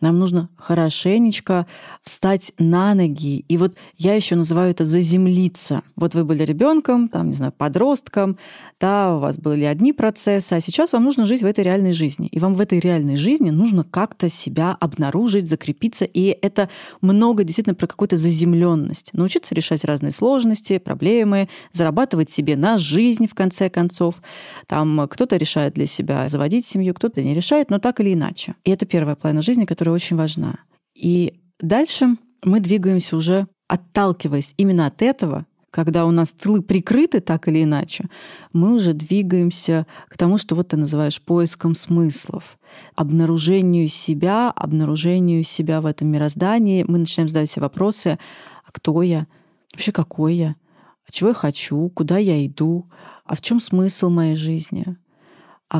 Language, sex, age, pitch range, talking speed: Russian, female, 30-49, 160-200 Hz, 160 wpm